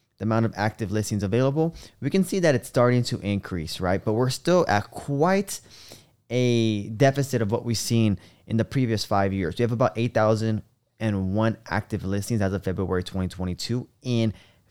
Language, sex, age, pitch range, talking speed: English, male, 20-39, 105-135 Hz, 175 wpm